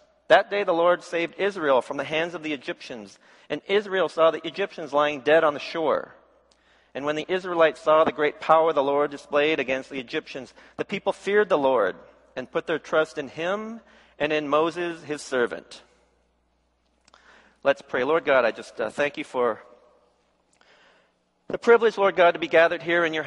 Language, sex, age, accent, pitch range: Korean, male, 40-59, American, 140-170 Hz